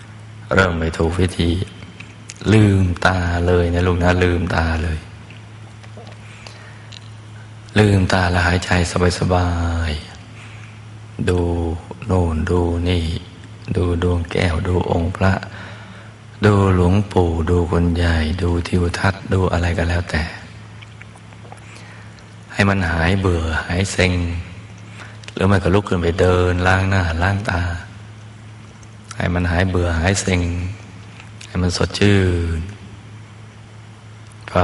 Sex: male